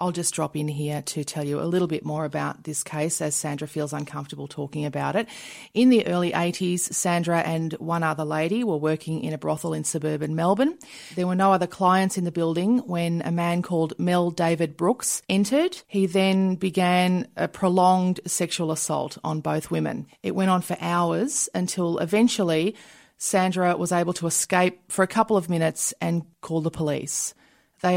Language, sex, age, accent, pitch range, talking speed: English, female, 30-49, Australian, 165-205 Hz, 185 wpm